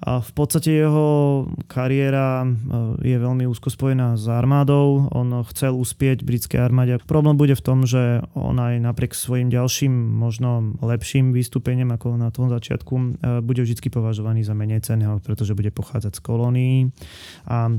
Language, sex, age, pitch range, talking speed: Slovak, male, 20-39, 115-130 Hz, 150 wpm